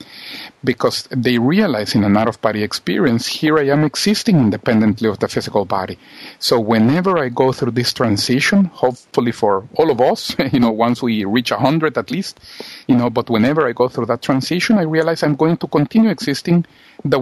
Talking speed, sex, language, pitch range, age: 185 wpm, male, English, 115-145 Hz, 50-69